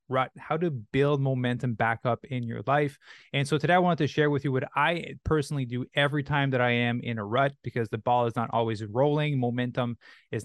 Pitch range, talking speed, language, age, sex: 115-130 Hz, 230 wpm, English, 20-39, male